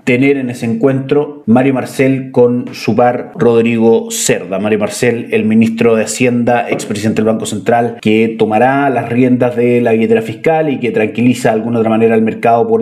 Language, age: Spanish, 30-49